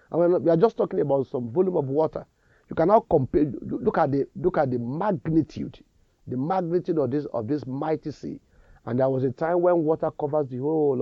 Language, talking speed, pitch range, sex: English, 185 wpm, 115-155 Hz, male